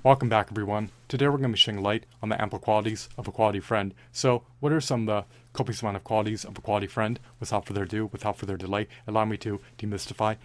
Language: English